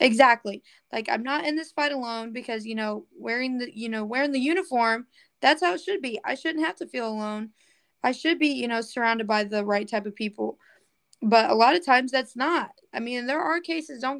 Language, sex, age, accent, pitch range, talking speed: English, female, 20-39, American, 215-275 Hz, 230 wpm